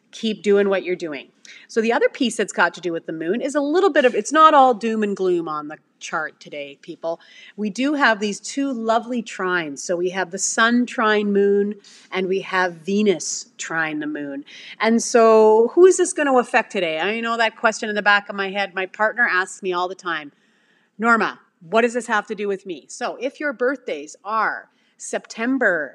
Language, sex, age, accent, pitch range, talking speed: English, female, 30-49, American, 185-235 Hz, 215 wpm